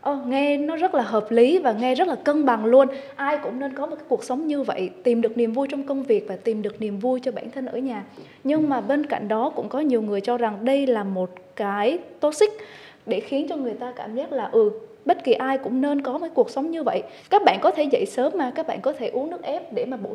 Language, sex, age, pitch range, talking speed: Vietnamese, female, 20-39, 225-285 Hz, 285 wpm